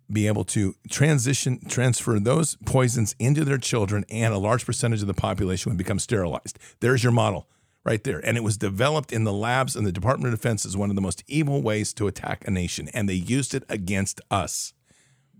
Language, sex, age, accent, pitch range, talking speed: English, male, 50-69, American, 100-130 Hz, 210 wpm